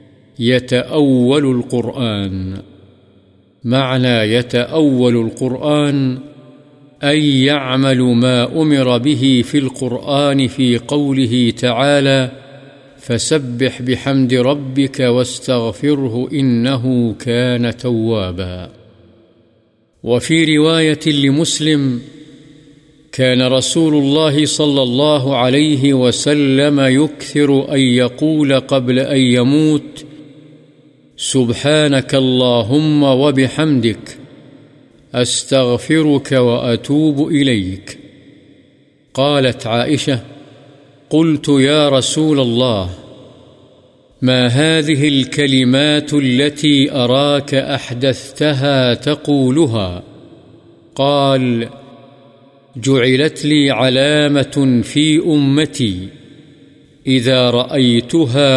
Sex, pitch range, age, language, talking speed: male, 125-145 Hz, 50-69, Urdu, 65 wpm